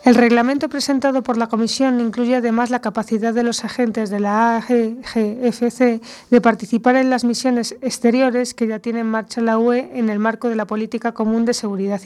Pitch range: 220-250 Hz